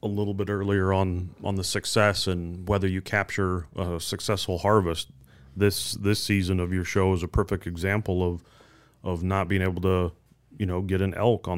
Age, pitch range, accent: 30-49, 90-110 Hz, American